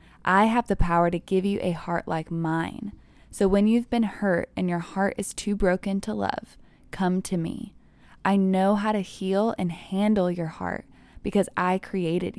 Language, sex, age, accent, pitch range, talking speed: English, female, 10-29, American, 170-200 Hz, 190 wpm